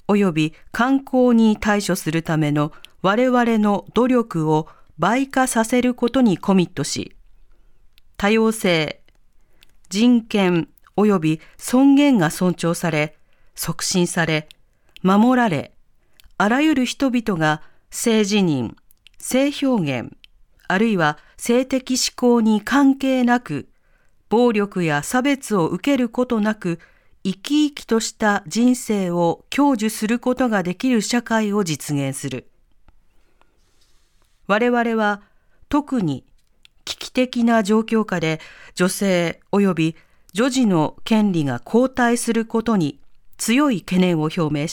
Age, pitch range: 40-59, 170-240 Hz